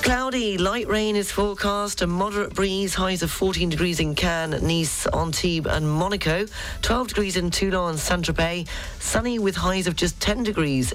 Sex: female